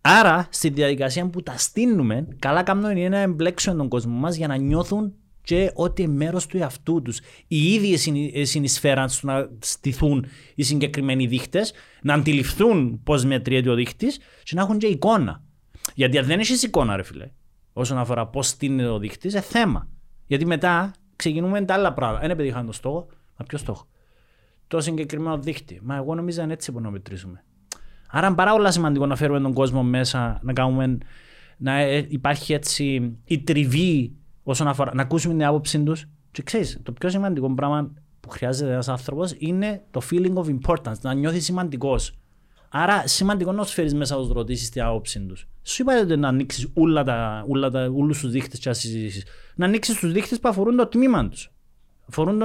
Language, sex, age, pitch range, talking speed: Greek, male, 30-49, 130-180 Hz, 170 wpm